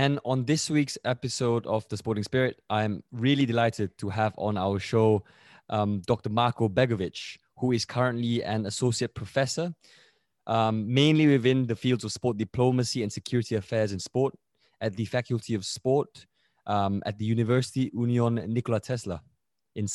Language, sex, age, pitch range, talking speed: English, male, 20-39, 105-125 Hz, 160 wpm